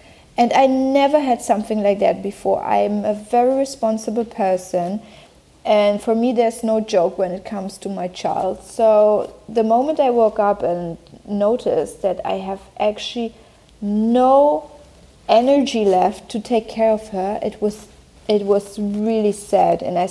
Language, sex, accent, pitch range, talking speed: English, female, German, 200-240 Hz, 160 wpm